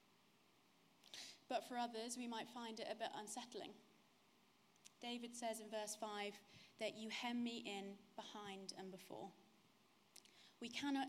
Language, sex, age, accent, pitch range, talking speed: English, female, 20-39, British, 205-235 Hz, 135 wpm